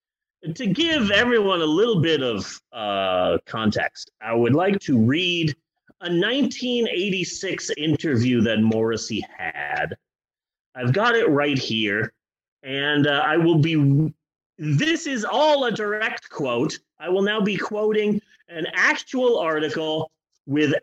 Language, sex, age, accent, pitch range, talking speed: English, male, 30-49, American, 160-260 Hz, 130 wpm